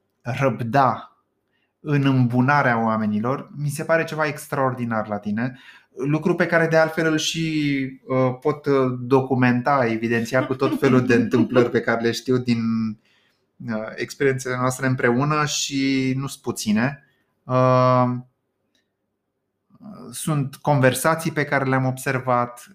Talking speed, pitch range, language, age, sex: 115 wpm, 120-155 Hz, Romanian, 20-39, male